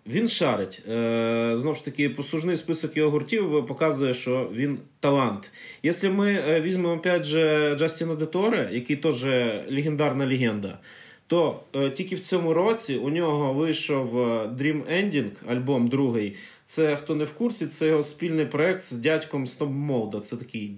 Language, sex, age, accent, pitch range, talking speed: Ukrainian, male, 20-39, native, 130-165 Hz, 145 wpm